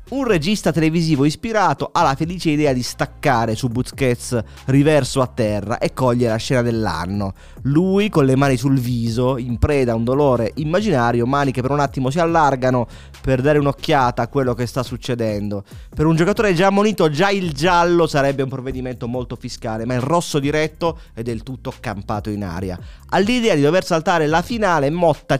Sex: male